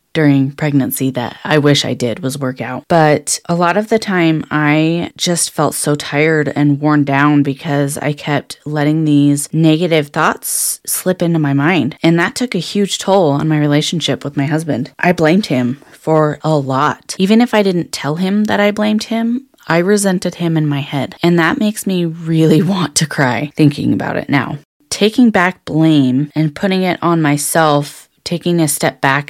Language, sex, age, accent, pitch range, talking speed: English, female, 20-39, American, 145-180 Hz, 190 wpm